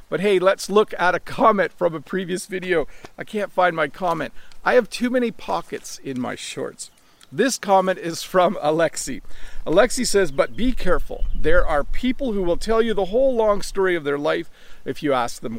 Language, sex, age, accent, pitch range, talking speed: English, male, 40-59, American, 155-205 Hz, 200 wpm